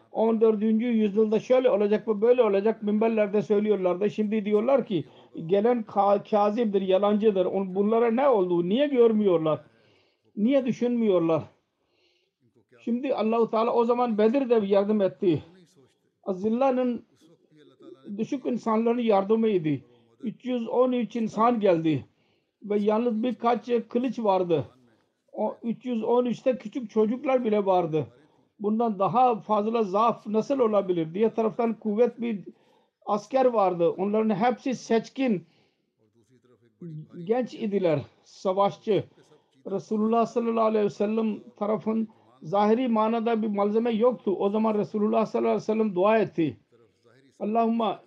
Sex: male